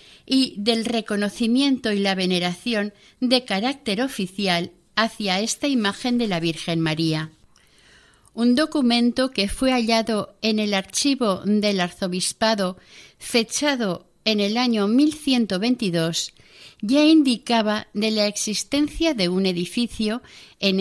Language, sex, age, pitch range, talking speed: Spanish, female, 50-69, 180-240 Hz, 115 wpm